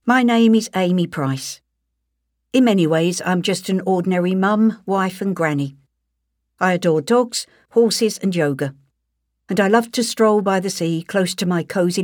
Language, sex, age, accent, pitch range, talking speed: English, female, 60-79, British, 145-210 Hz, 170 wpm